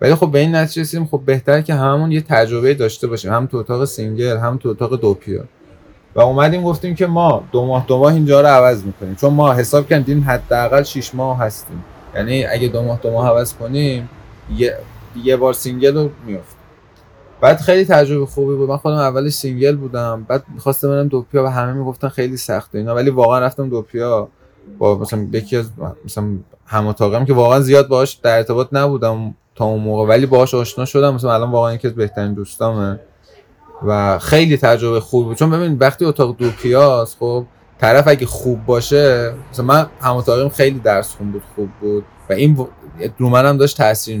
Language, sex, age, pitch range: Persian, male, 20-39, 110-140 Hz